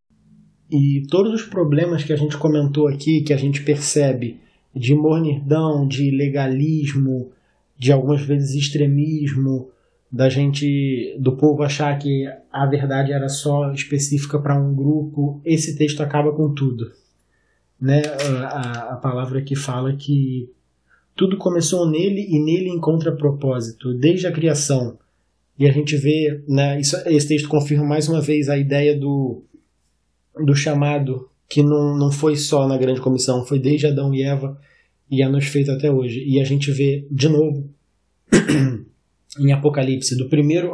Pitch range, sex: 130-150 Hz, male